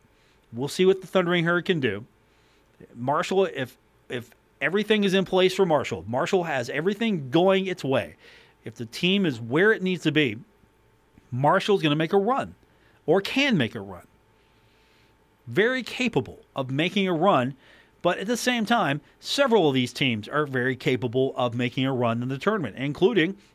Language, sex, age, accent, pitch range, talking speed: English, male, 40-59, American, 130-185 Hz, 175 wpm